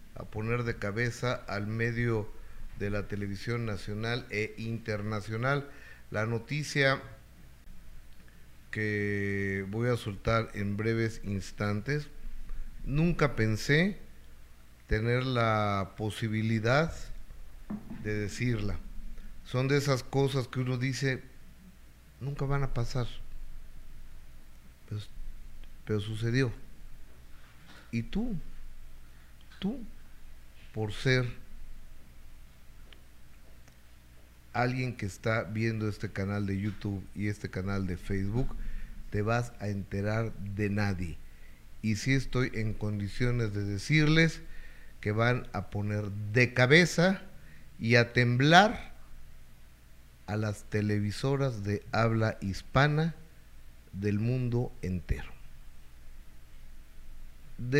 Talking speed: 95 wpm